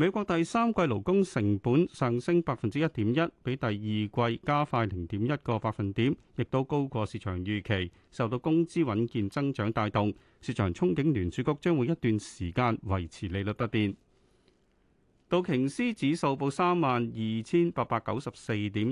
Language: Chinese